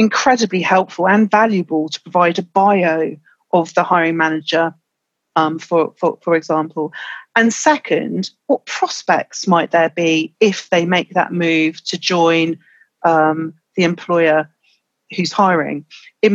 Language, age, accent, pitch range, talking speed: English, 40-59, British, 165-195 Hz, 135 wpm